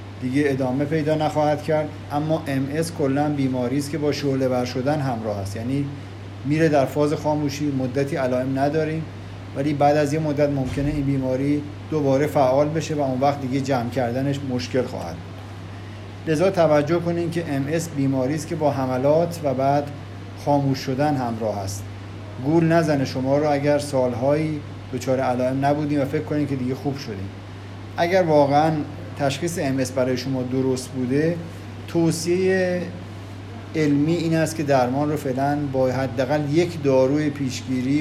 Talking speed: 155 wpm